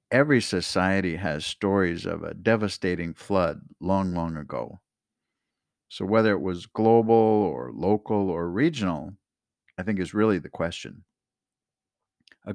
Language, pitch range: English, 90-115 Hz